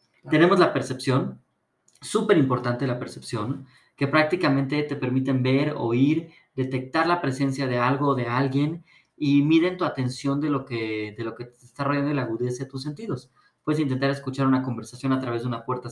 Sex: male